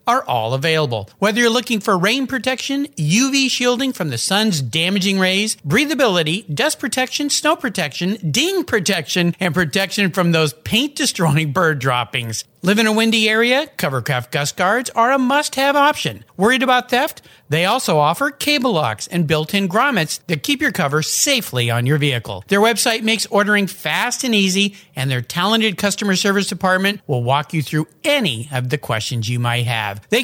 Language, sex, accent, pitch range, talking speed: English, male, American, 155-240 Hz, 175 wpm